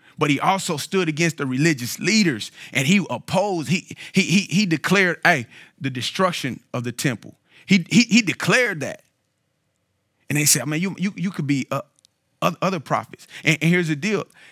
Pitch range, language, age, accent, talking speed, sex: 120-165 Hz, English, 40-59, American, 180 wpm, male